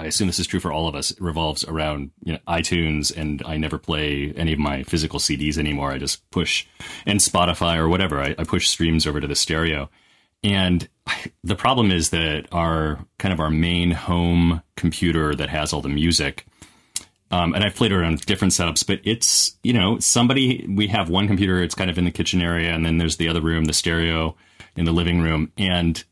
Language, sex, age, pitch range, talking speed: English, male, 30-49, 75-90 Hz, 215 wpm